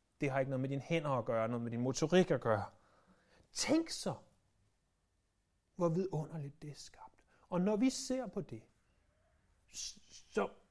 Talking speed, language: 165 wpm, Danish